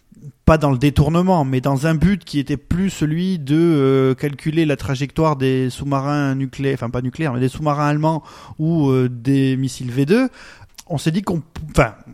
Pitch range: 130-165 Hz